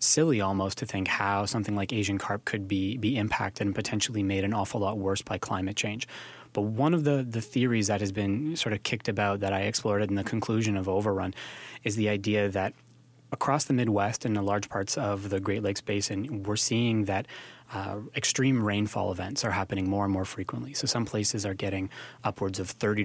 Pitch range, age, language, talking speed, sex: 100-120 Hz, 20-39, English, 210 wpm, male